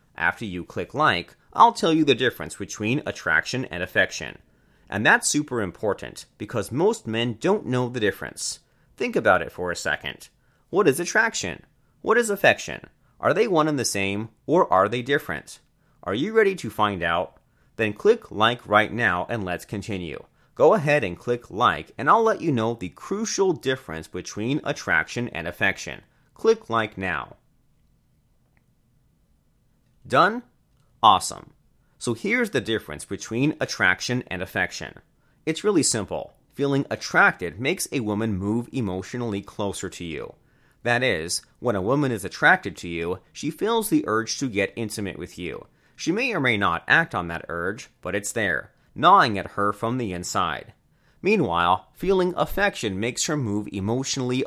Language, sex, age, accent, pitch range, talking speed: English, male, 30-49, American, 100-150 Hz, 160 wpm